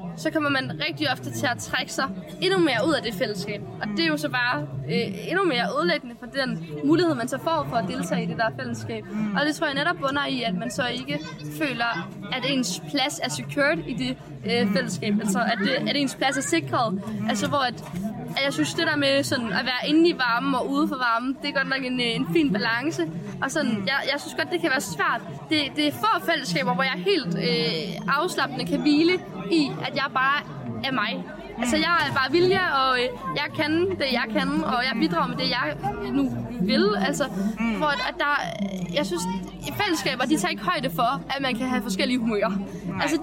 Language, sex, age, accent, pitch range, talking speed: Danish, female, 20-39, native, 195-290 Hz, 220 wpm